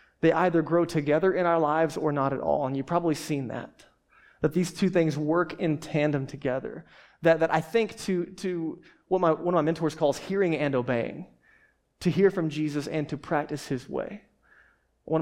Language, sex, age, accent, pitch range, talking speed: English, male, 20-39, American, 145-175 Hz, 195 wpm